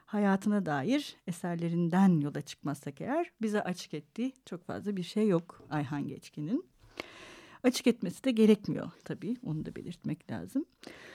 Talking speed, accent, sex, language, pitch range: 135 wpm, native, female, Turkish, 185-250 Hz